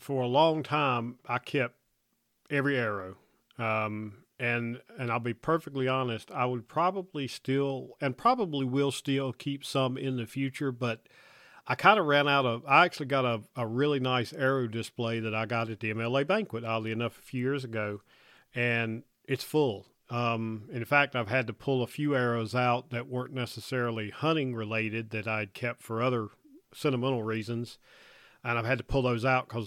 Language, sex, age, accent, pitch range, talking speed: English, male, 40-59, American, 115-140 Hz, 180 wpm